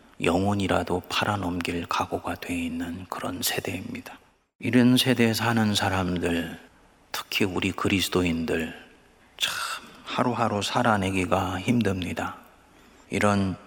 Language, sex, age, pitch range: Korean, male, 30-49, 90-115 Hz